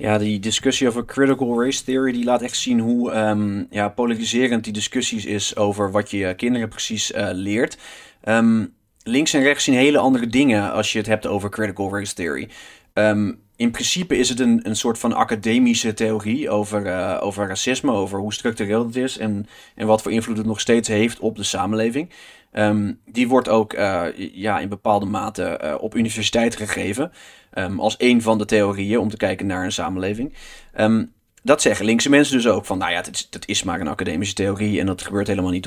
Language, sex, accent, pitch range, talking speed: Dutch, male, Dutch, 105-125 Hz, 185 wpm